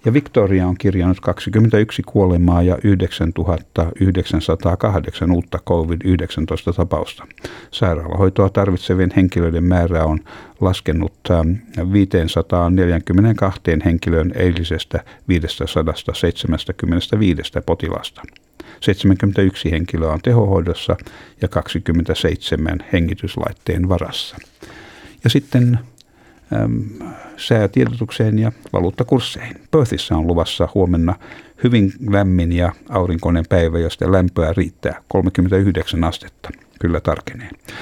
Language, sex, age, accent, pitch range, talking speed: Finnish, male, 60-79, native, 85-100 Hz, 80 wpm